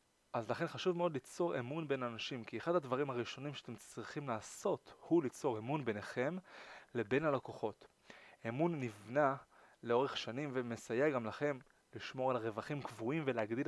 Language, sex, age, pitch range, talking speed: Hebrew, male, 20-39, 120-150 Hz, 145 wpm